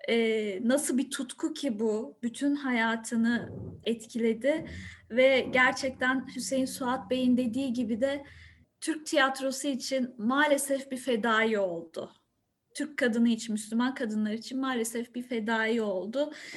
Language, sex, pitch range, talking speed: Turkish, female, 225-270 Hz, 120 wpm